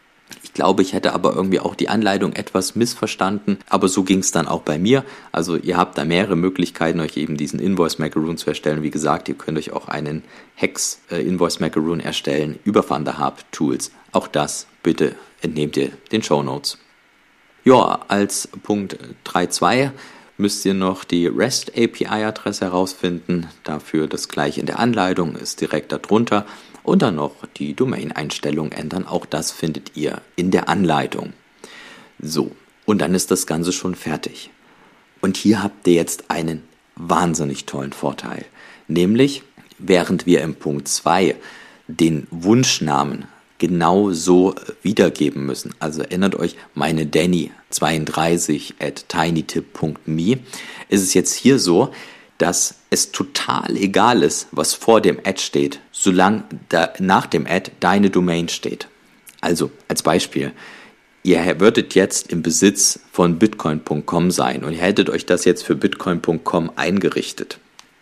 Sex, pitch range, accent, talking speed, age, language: male, 80-100 Hz, German, 140 wpm, 50-69, German